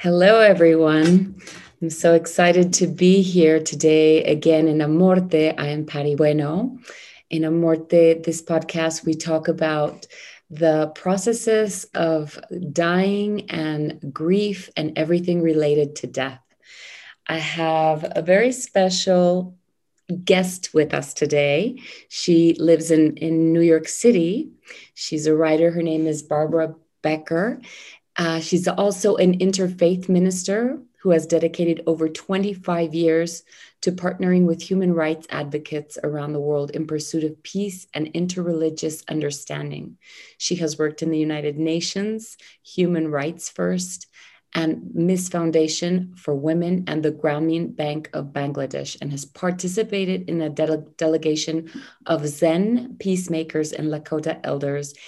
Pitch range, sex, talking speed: 155-180 Hz, female, 130 wpm